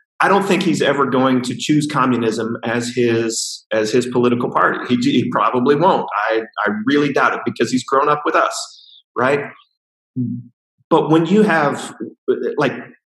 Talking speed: 165 wpm